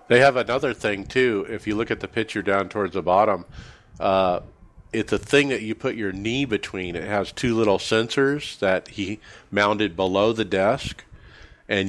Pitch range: 95-115 Hz